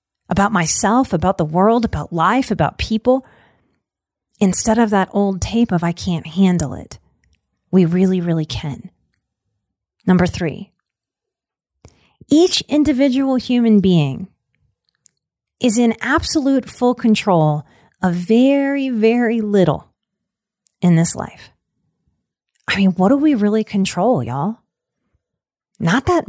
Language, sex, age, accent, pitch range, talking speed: English, female, 30-49, American, 180-245 Hz, 115 wpm